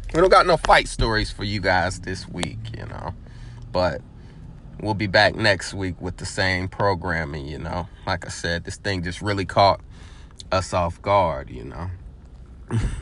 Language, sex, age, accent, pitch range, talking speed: English, male, 30-49, American, 85-105 Hz, 175 wpm